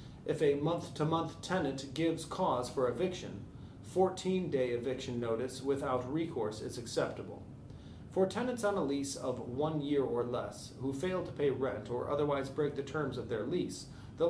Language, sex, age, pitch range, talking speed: English, male, 30-49, 125-160 Hz, 165 wpm